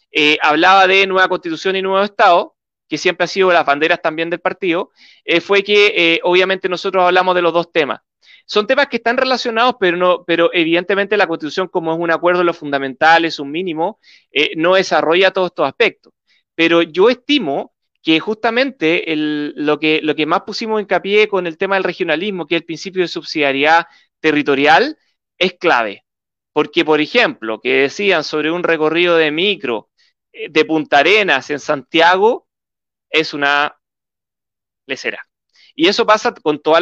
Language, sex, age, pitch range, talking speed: Spanish, male, 30-49, 160-205 Hz, 175 wpm